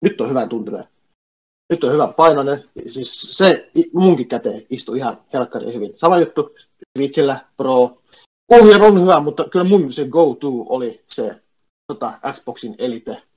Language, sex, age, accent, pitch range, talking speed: Finnish, male, 30-49, native, 120-165 Hz, 150 wpm